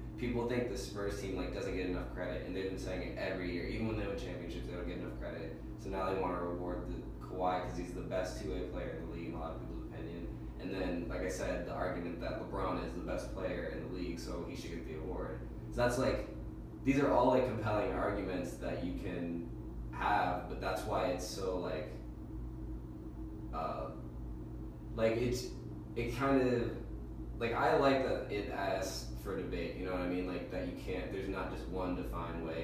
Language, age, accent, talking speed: English, 20-39, American, 220 wpm